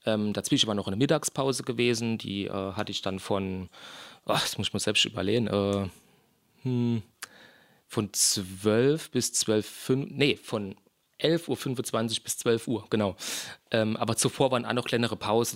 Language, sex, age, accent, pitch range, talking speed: German, male, 30-49, German, 110-130 Hz, 165 wpm